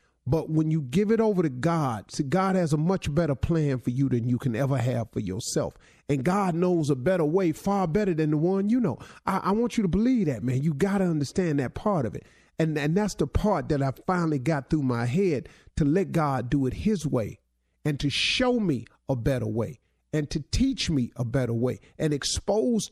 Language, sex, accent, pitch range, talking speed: English, male, American, 130-185 Hz, 230 wpm